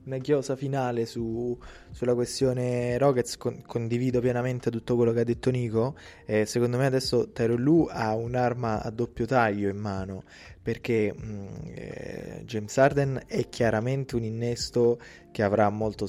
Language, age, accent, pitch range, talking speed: Italian, 20-39, native, 100-115 Hz, 155 wpm